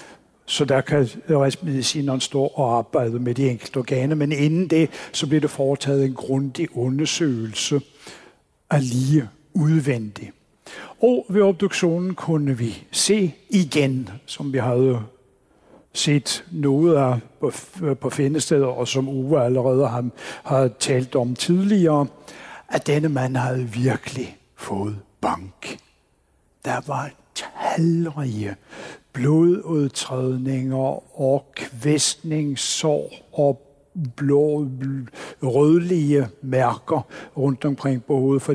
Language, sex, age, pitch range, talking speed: Danish, male, 60-79, 130-150 Hz, 110 wpm